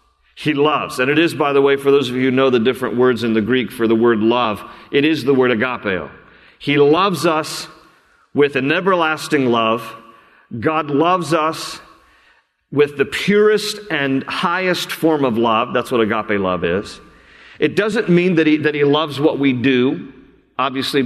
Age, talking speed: 50-69, 180 wpm